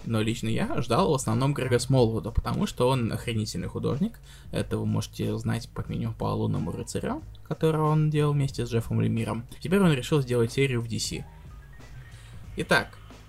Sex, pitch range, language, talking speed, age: male, 110-140 Hz, Russian, 165 wpm, 20-39